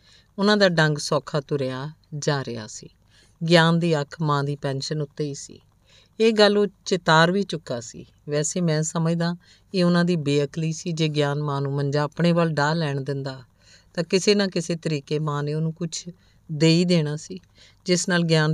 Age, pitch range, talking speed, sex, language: 50-69, 140-170 Hz, 190 wpm, female, Punjabi